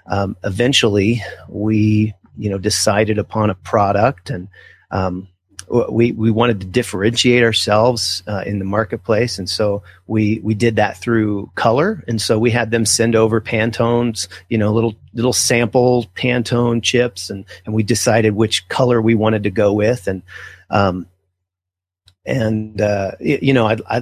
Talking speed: 155 wpm